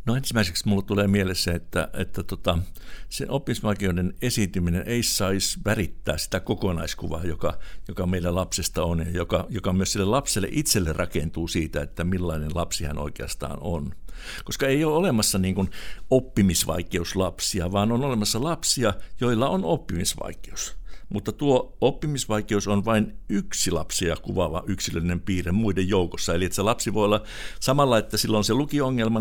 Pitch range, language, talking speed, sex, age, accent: 90-110 Hz, Finnish, 150 wpm, male, 60-79, native